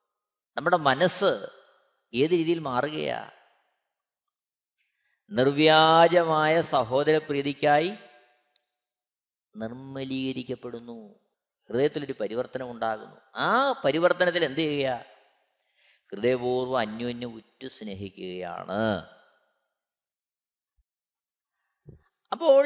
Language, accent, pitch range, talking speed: Malayalam, native, 125-190 Hz, 50 wpm